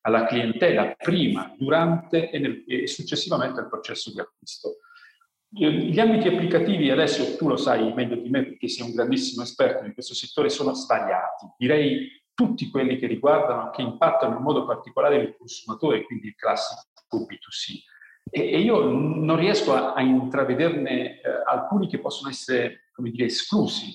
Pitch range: 135-195 Hz